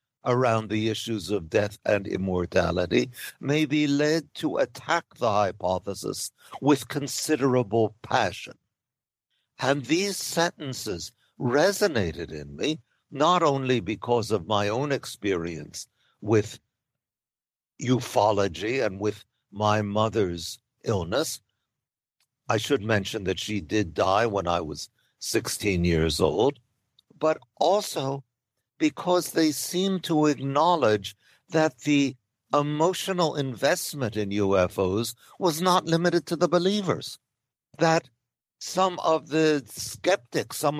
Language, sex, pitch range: English, male, 110-155 Hz